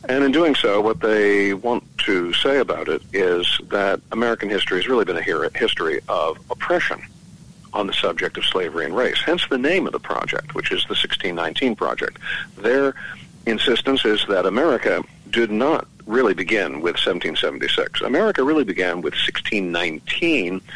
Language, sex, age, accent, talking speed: English, male, 50-69, American, 160 wpm